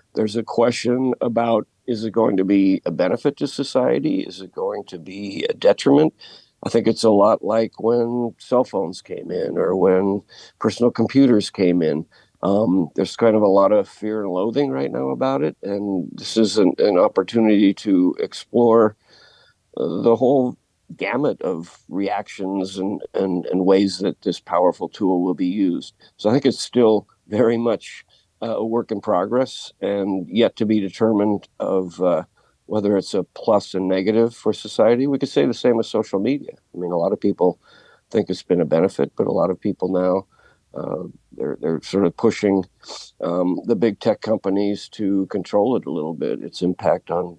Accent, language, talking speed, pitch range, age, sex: American, English, 185 wpm, 95-115 Hz, 50-69, male